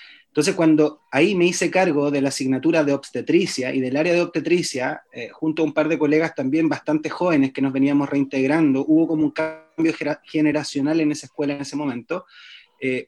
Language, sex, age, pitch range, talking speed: Spanish, male, 30-49, 140-165 Hz, 195 wpm